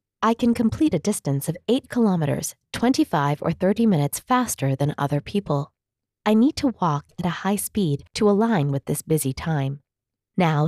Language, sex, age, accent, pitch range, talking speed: English, female, 20-39, American, 145-205 Hz, 175 wpm